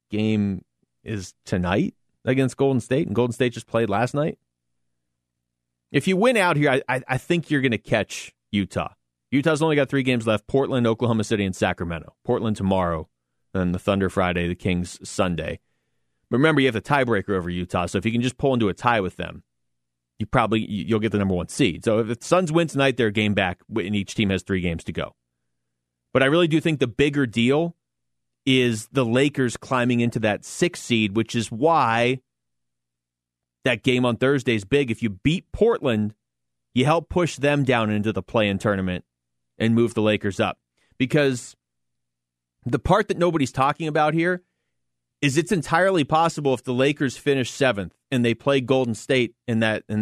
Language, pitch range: English, 90-135 Hz